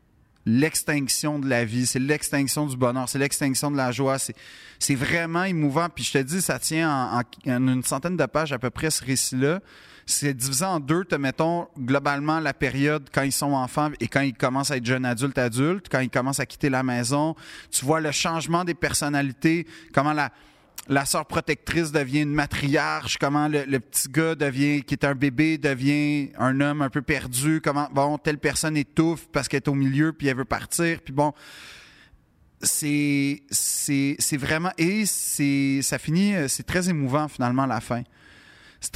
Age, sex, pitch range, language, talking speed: 30-49, male, 135-160 Hz, French, 195 wpm